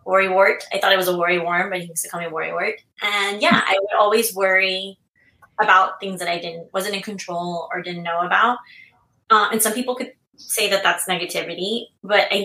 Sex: female